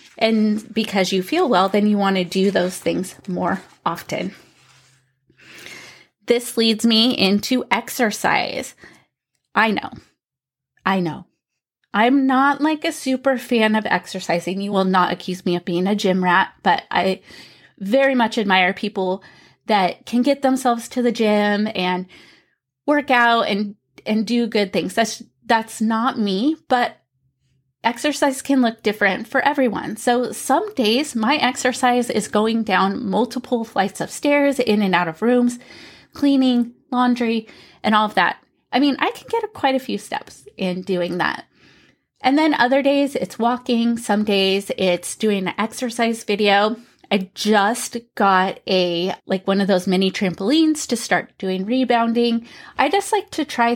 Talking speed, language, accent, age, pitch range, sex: 155 wpm, English, American, 30-49, 190-255 Hz, female